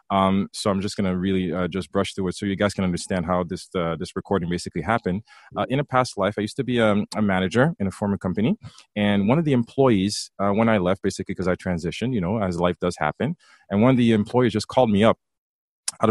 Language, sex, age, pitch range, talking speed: English, male, 30-49, 100-125 Hz, 255 wpm